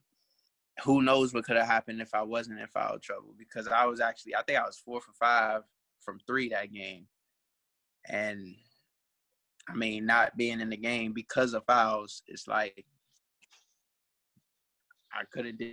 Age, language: 20-39, English